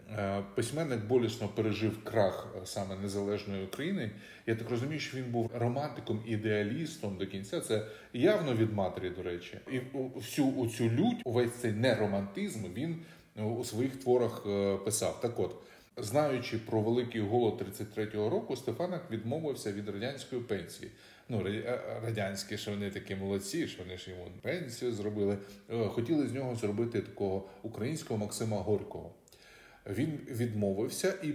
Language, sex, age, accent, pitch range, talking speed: Ukrainian, male, 20-39, native, 100-125 Hz, 135 wpm